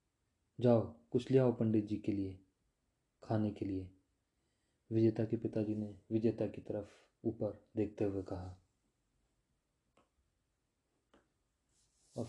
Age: 30-49